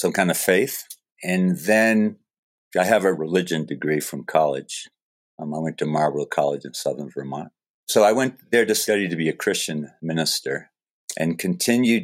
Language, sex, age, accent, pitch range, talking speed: English, male, 50-69, American, 80-95 Hz, 175 wpm